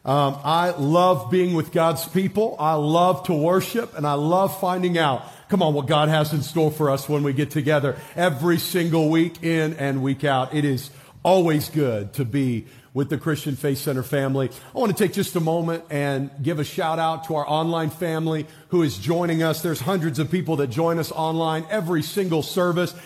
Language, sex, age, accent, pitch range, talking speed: English, male, 50-69, American, 135-170 Hz, 205 wpm